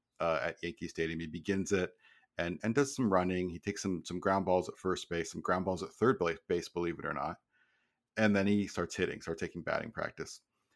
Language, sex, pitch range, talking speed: English, male, 85-105 Hz, 225 wpm